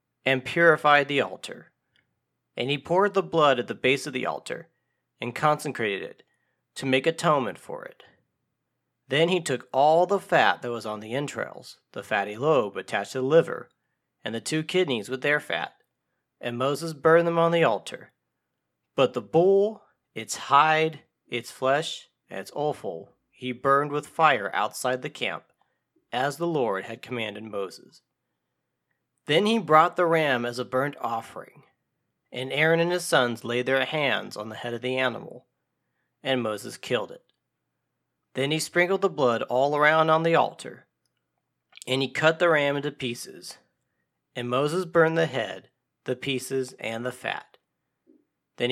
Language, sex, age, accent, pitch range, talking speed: English, male, 40-59, American, 125-165 Hz, 165 wpm